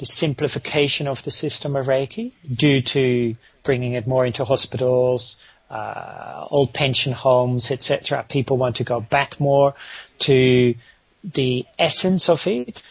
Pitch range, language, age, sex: 130-165 Hz, English, 40-59, male